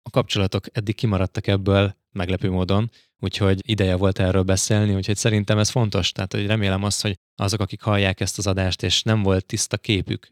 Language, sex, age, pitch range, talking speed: Hungarian, male, 20-39, 90-105 Hz, 185 wpm